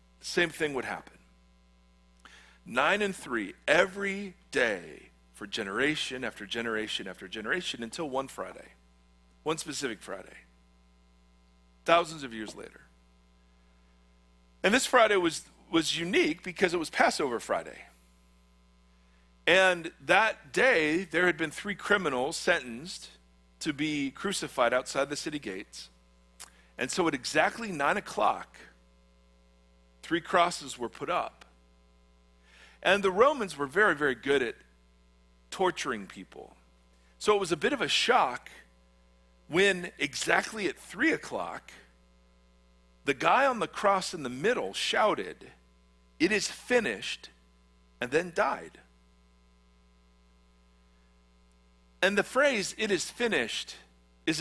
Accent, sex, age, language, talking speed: American, male, 40-59, English, 120 wpm